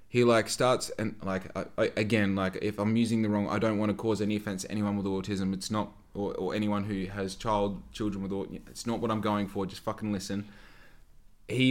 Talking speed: 225 wpm